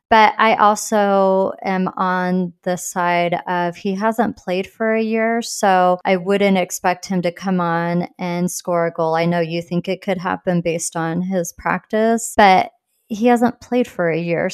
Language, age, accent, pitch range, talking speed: English, 30-49, American, 175-195 Hz, 180 wpm